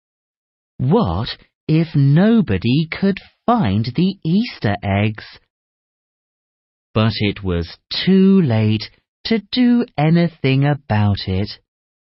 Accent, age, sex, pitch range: British, 30-49, male, 100-160 Hz